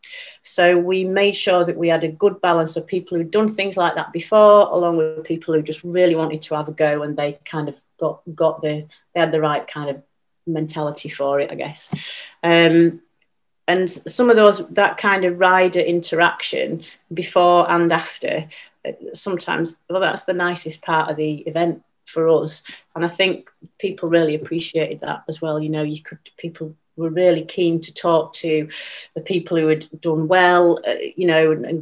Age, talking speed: 30-49, 190 wpm